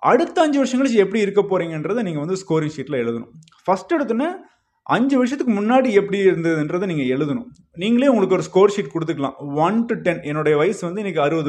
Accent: Indian